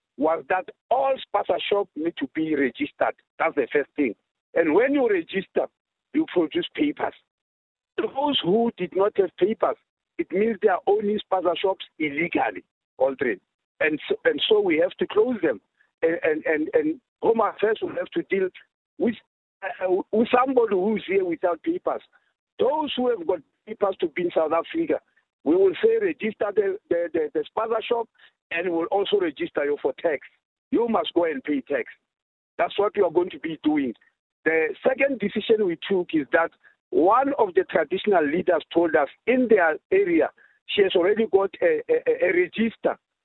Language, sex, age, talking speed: English, male, 50-69, 180 wpm